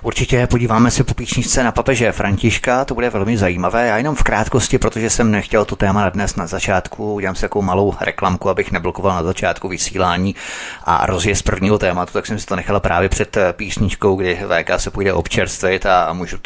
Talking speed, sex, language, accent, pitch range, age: 195 wpm, male, Czech, native, 95-110 Hz, 30-49